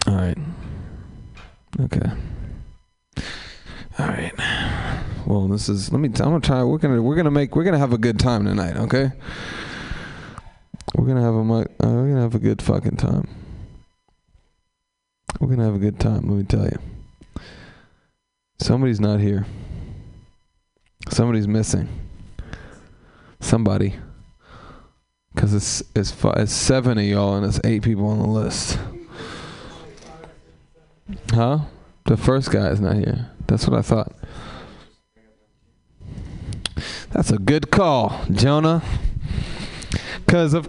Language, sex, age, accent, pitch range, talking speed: English, male, 20-39, American, 100-125 Hz, 130 wpm